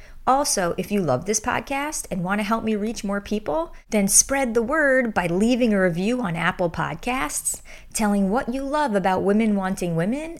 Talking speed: 190 wpm